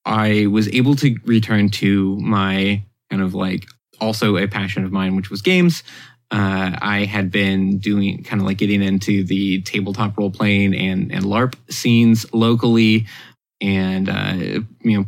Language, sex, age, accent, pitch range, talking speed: English, male, 20-39, American, 100-110 Hz, 165 wpm